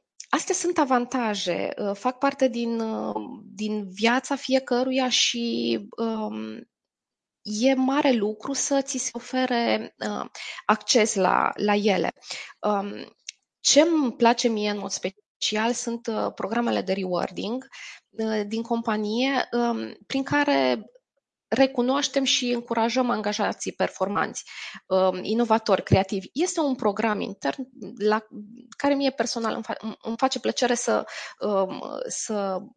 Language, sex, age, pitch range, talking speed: Romanian, female, 20-39, 205-265 Hz, 105 wpm